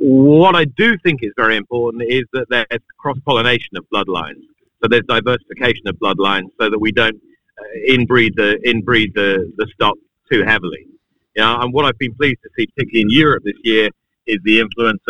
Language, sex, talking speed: English, male, 190 wpm